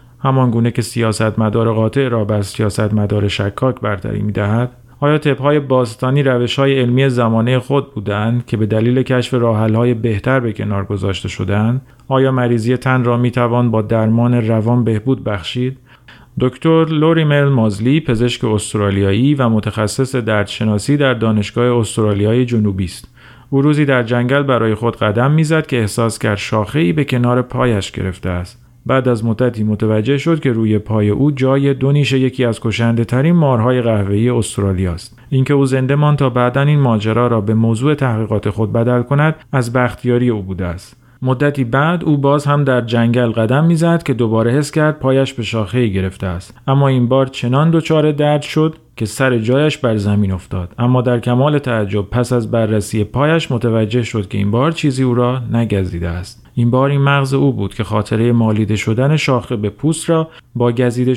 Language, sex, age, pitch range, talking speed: Persian, male, 40-59, 110-135 Hz, 175 wpm